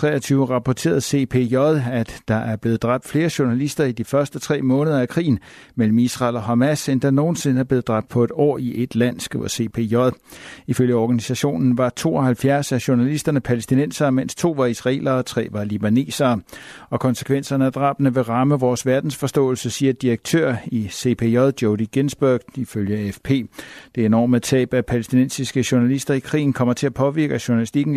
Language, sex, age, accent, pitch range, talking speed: Danish, male, 60-79, native, 115-140 Hz, 165 wpm